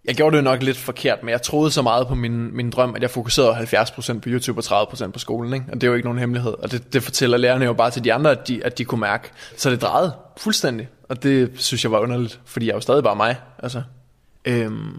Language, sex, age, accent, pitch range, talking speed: Danish, male, 20-39, native, 120-130 Hz, 275 wpm